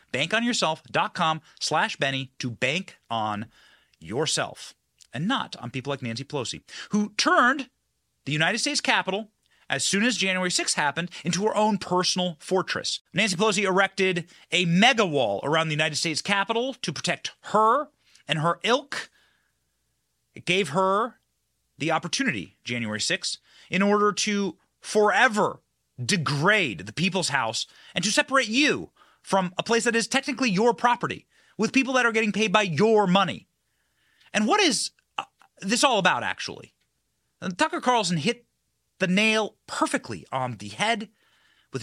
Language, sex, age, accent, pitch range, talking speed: English, male, 30-49, American, 150-220 Hz, 145 wpm